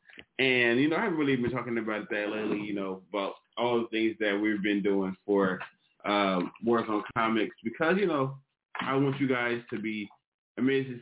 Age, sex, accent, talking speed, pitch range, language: 20-39, male, American, 195 wpm, 100-115 Hz, English